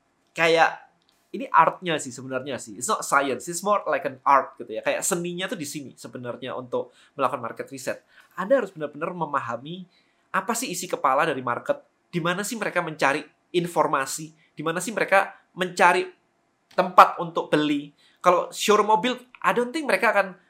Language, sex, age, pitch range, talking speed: Indonesian, male, 20-39, 150-205 Hz, 165 wpm